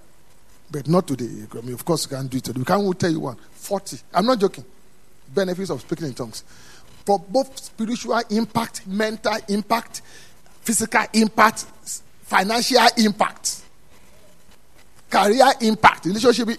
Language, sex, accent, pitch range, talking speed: English, male, Nigerian, 150-215 Hz, 145 wpm